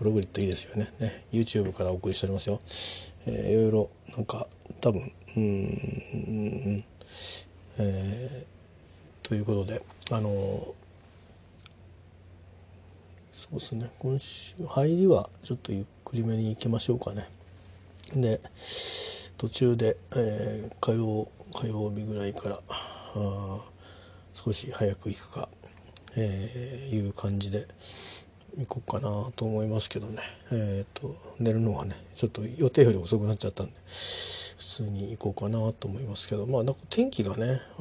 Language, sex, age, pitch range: Japanese, male, 40-59, 95-115 Hz